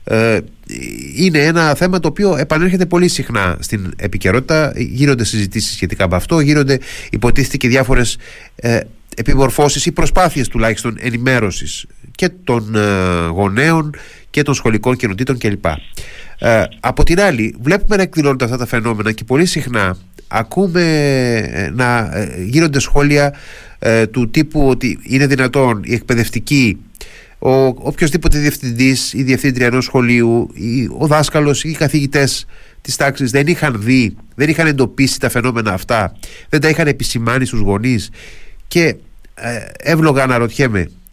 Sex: male